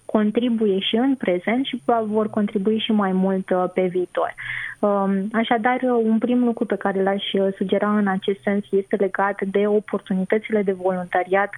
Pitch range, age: 190-220 Hz, 20-39